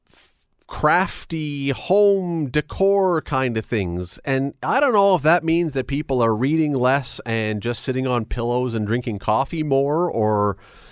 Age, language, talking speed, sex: 30-49, English, 155 wpm, male